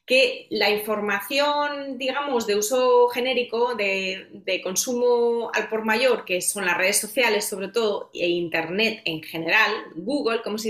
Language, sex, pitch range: Spanish, female, 190-270 Hz